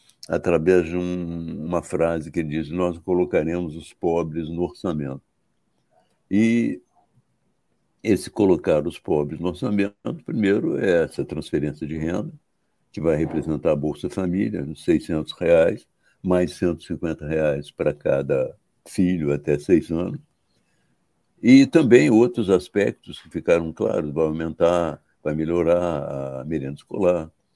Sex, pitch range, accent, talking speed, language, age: male, 80-100 Hz, Brazilian, 125 wpm, Portuguese, 60-79